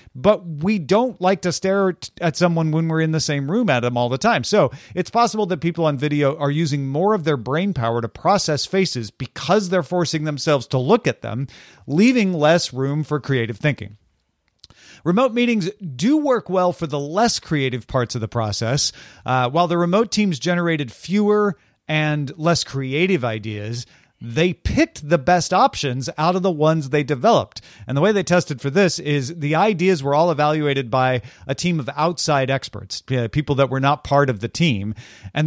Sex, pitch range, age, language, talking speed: male, 130-180 Hz, 40-59, English, 190 wpm